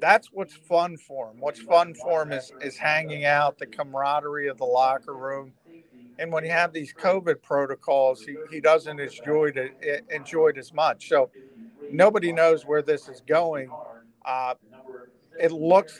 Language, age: English, 50-69